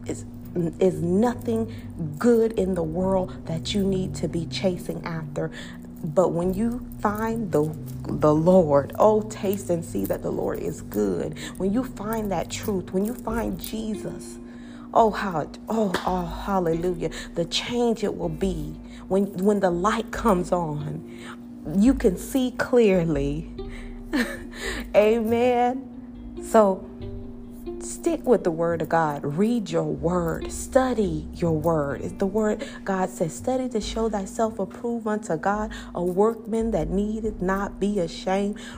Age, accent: 40-59, American